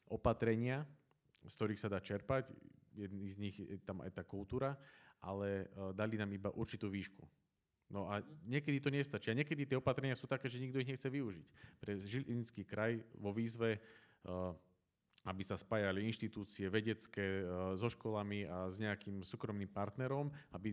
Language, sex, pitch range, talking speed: Slovak, male, 95-115 Hz, 155 wpm